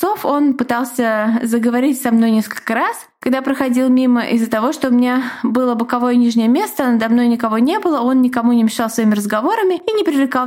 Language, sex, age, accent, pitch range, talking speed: Russian, female, 20-39, native, 230-280 Hz, 190 wpm